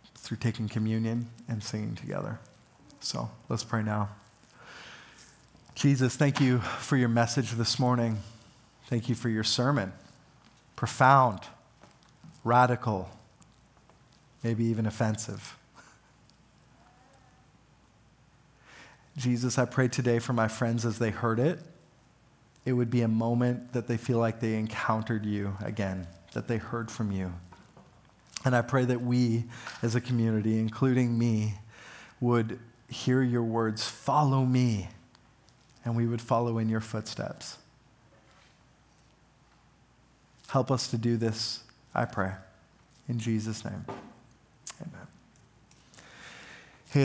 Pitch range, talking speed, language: 110-125 Hz, 115 wpm, English